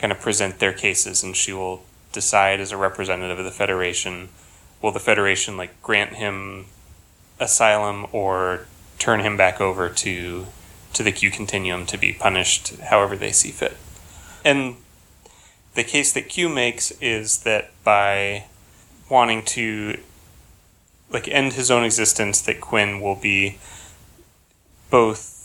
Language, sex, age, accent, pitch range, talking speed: English, male, 30-49, American, 95-110 Hz, 140 wpm